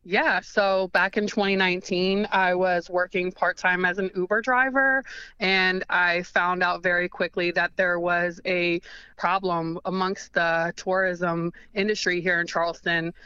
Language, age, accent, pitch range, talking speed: English, 20-39, American, 175-195 Hz, 140 wpm